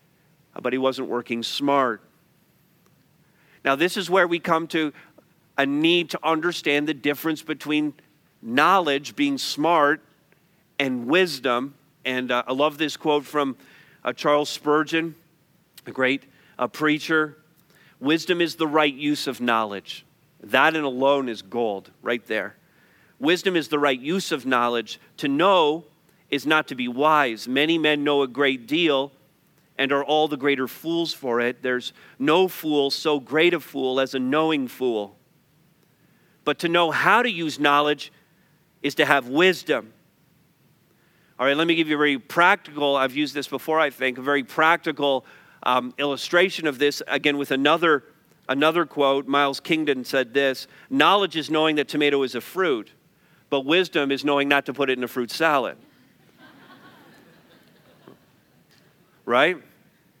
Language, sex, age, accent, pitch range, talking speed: English, male, 40-59, American, 140-165 Hz, 155 wpm